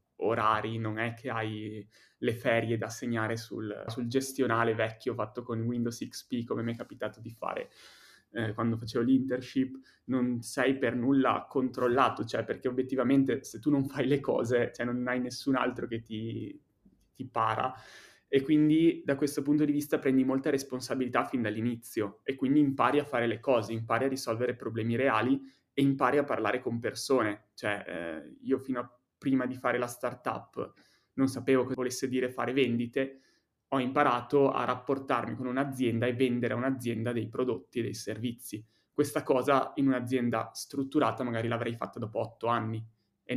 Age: 20-39